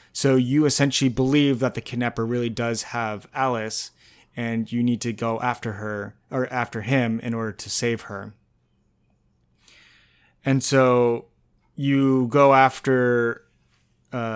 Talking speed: 135 wpm